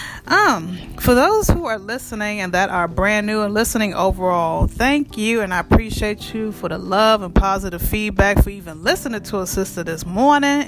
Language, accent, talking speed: English, American, 190 wpm